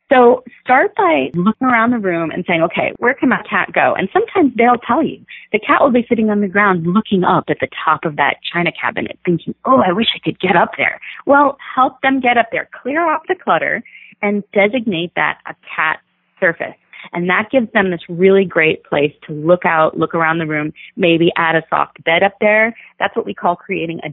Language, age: English, 30-49